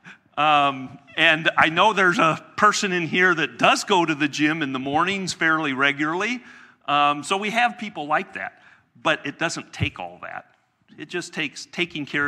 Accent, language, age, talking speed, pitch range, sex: American, English, 50-69, 185 wpm, 125-170 Hz, male